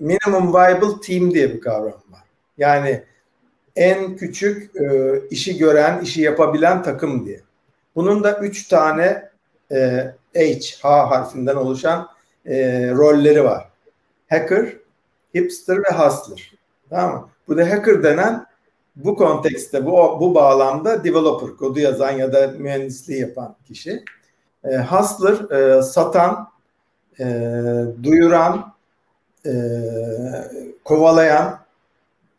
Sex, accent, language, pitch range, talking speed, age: male, native, Turkish, 135-180 Hz, 110 wpm, 60-79